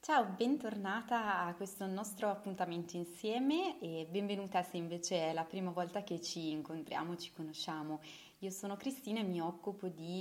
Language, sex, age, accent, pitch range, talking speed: Italian, female, 20-39, native, 165-200 Hz, 160 wpm